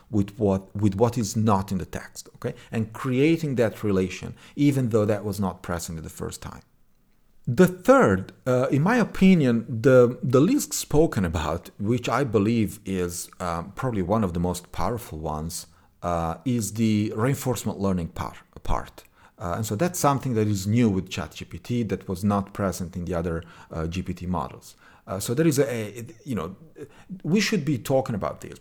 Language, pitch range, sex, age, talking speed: English, 95-125 Hz, male, 40-59, 185 wpm